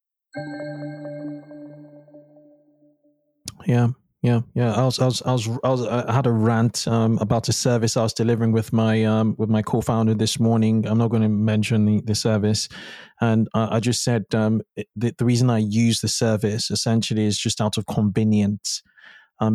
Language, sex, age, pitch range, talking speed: English, male, 20-39, 105-120 Hz, 180 wpm